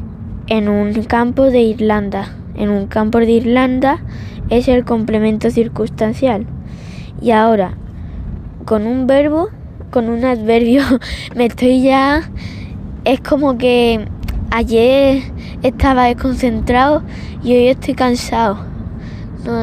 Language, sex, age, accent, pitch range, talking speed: Spanish, female, 10-29, Spanish, 220-255 Hz, 110 wpm